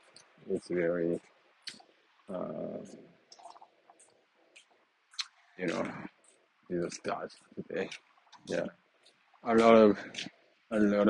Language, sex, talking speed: English, male, 80 wpm